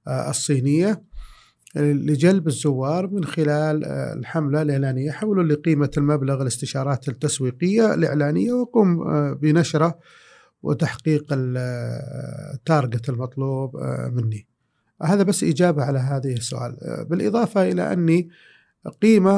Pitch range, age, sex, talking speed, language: 130-155 Hz, 50-69, male, 90 wpm, Arabic